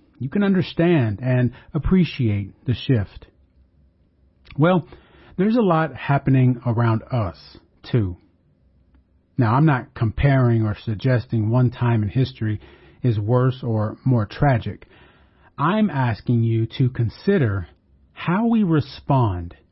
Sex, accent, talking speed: male, American, 115 wpm